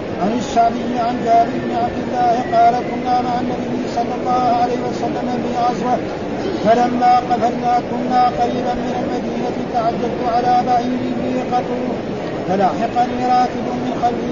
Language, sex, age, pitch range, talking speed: Arabic, male, 50-69, 240-250 Hz, 140 wpm